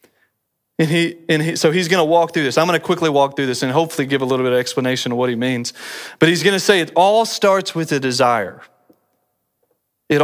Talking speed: 230 wpm